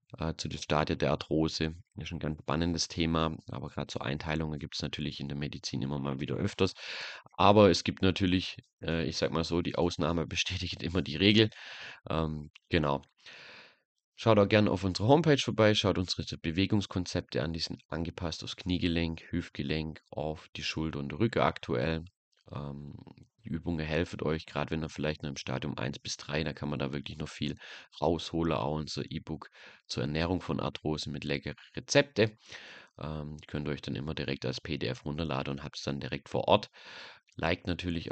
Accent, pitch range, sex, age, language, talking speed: German, 75-90 Hz, male, 30-49, German, 185 wpm